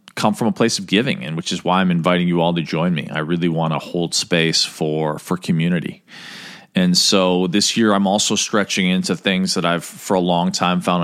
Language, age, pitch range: English, 40-59, 80-100 Hz